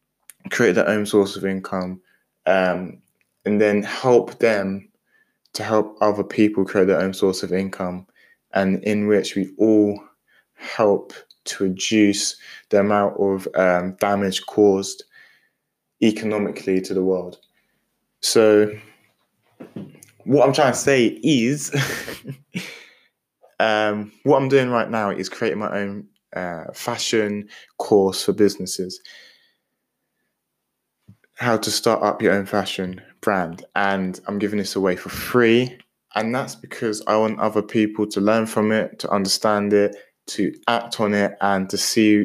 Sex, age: male, 20-39